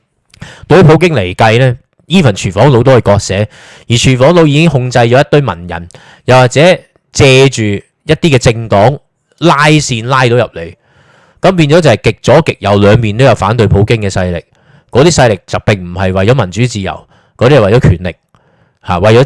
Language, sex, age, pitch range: Chinese, male, 20-39, 100-135 Hz